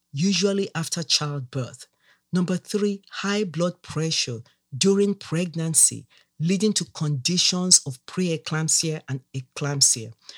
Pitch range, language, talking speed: 145-175 Hz, English, 100 wpm